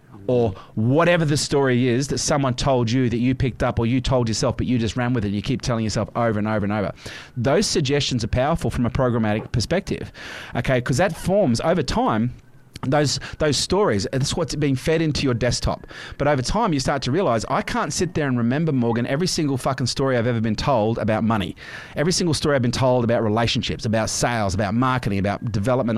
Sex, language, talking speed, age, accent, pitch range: male, English, 220 wpm, 30-49, Australian, 115-145 Hz